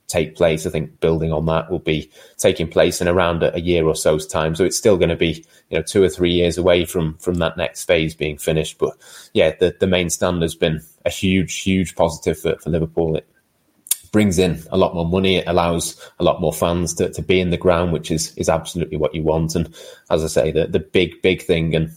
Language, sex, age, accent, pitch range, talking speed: English, male, 20-39, British, 80-85 Hz, 245 wpm